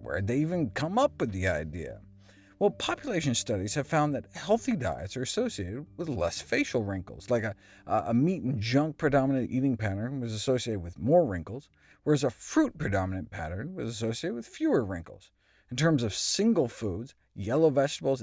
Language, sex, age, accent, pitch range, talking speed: English, male, 50-69, American, 105-160 Hz, 180 wpm